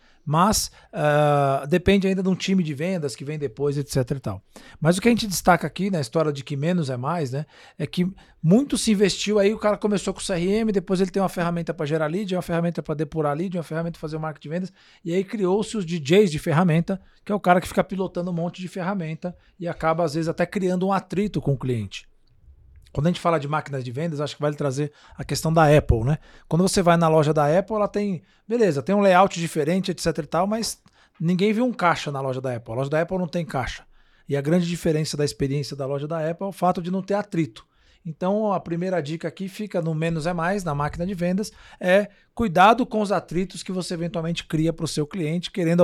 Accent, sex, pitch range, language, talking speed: Brazilian, male, 155-195 Hz, Portuguese, 245 wpm